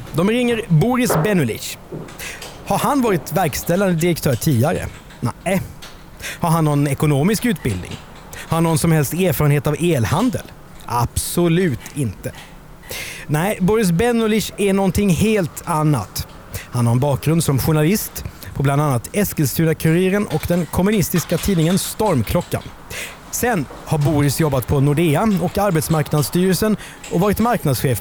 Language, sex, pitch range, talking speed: Swedish, male, 130-180 Hz, 125 wpm